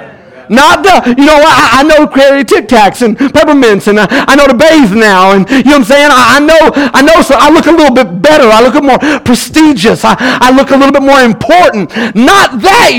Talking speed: 245 wpm